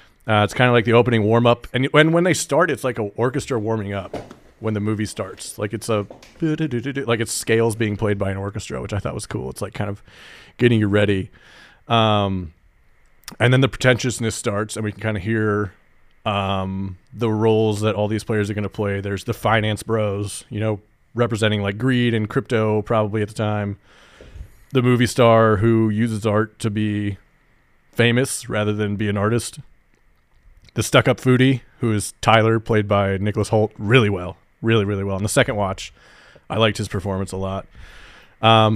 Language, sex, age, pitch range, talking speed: English, male, 30-49, 105-120 Hz, 195 wpm